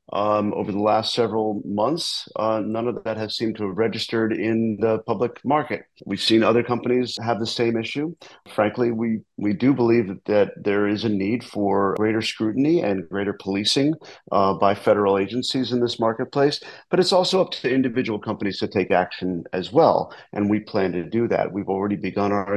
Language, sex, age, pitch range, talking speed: English, male, 40-59, 100-115 Hz, 190 wpm